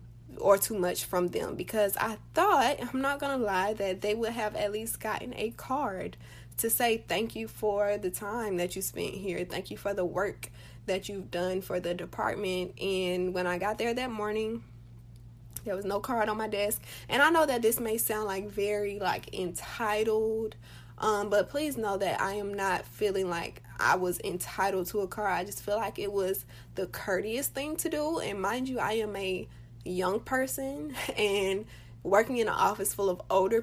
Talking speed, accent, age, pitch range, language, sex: 200 wpm, American, 20-39, 180-235 Hz, English, female